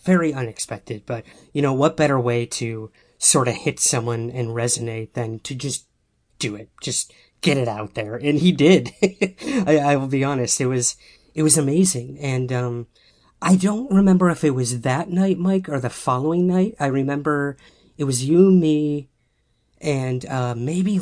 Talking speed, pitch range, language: 175 wpm, 120-155 Hz, English